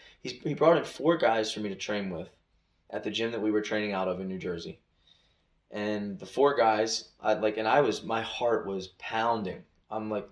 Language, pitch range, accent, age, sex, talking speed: English, 95-115 Hz, American, 20-39, male, 220 wpm